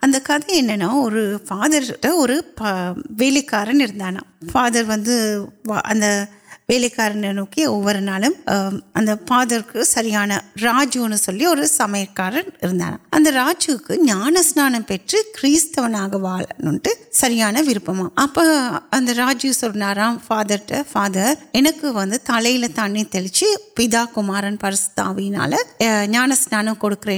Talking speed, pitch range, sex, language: 65 wpm, 205-290 Hz, female, Urdu